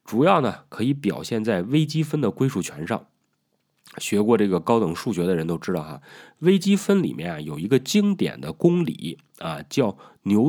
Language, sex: Chinese, male